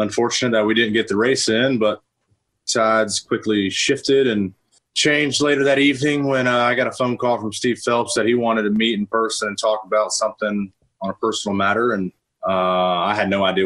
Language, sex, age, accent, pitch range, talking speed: English, male, 30-49, American, 95-115 Hz, 210 wpm